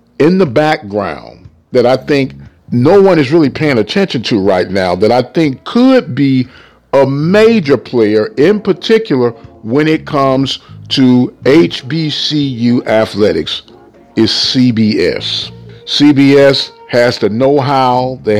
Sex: male